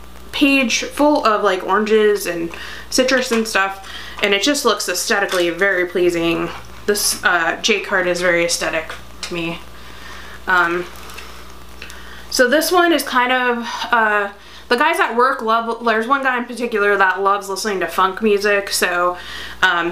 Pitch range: 175-220 Hz